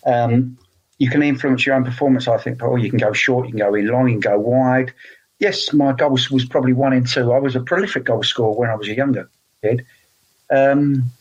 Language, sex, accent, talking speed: English, male, British, 235 wpm